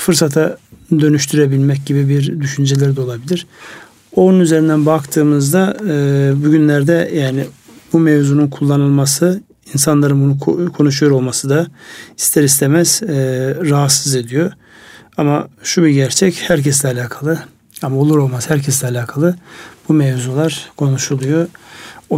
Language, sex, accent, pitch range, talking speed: Turkish, male, native, 130-160 Hz, 110 wpm